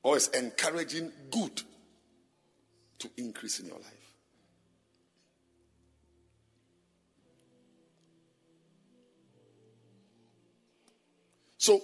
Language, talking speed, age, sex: English, 50 wpm, 50-69, male